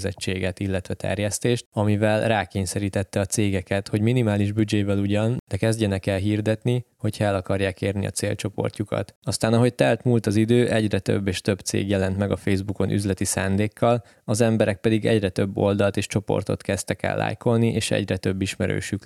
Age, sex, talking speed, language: 20-39, male, 165 wpm, Hungarian